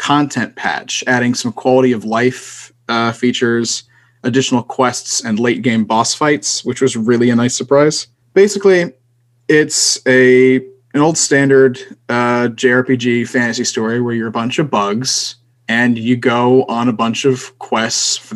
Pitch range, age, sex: 120-135 Hz, 20-39, male